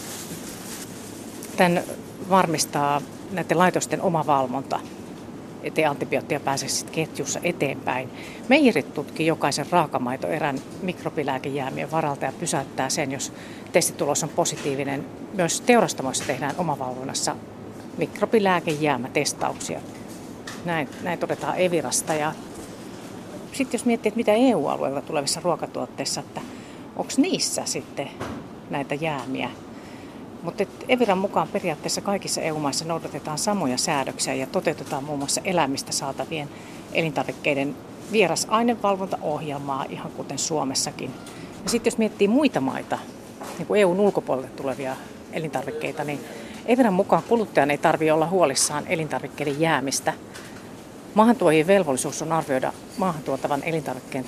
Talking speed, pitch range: 105 wpm, 145-195 Hz